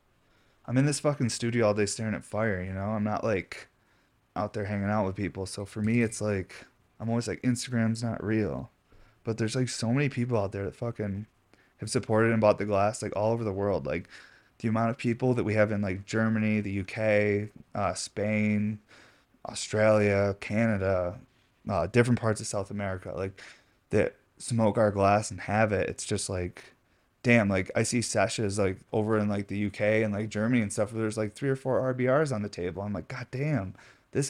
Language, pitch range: English, 100-120 Hz